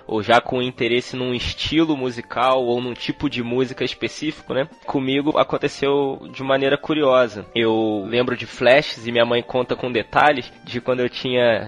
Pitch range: 125-160 Hz